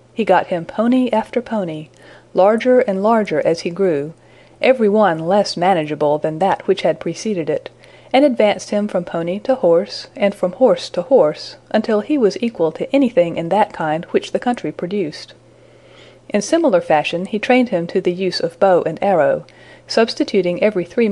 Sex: female